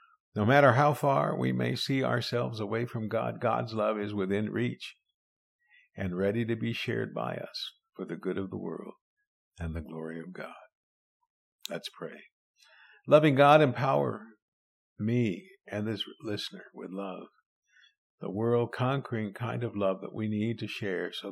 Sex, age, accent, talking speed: male, 50-69, American, 160 wpm